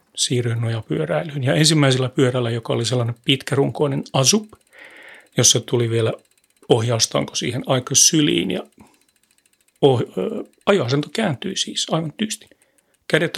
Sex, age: male, 40-59